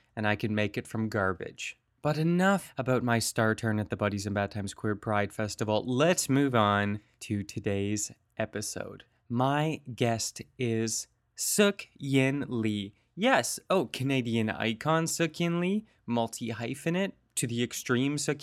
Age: 20-39